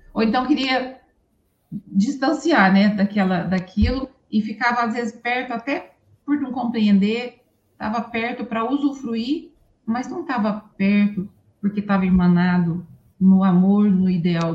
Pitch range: 190-235 Hz